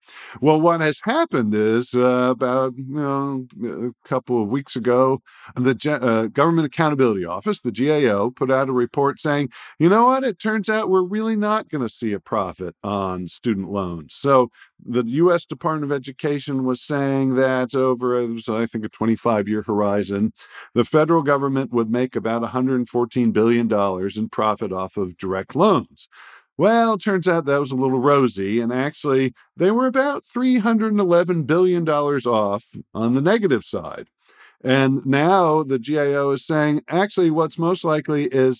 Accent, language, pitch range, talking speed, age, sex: American, English, 120-165 Hz, 165 wpm, 50-69, male